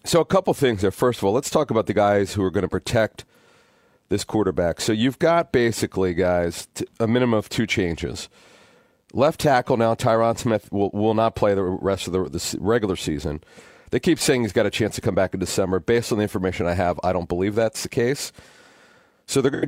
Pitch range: 100-125 Hz